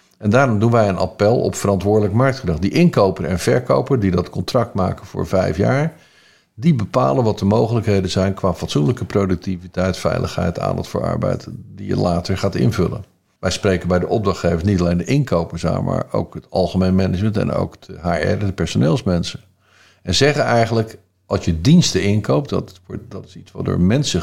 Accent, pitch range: Dutch, 90-110 Hz